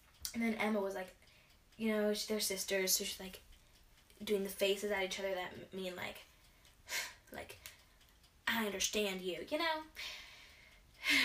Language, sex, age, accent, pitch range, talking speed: English, female, 10-29, American, 200-255 Hz, 155 wpm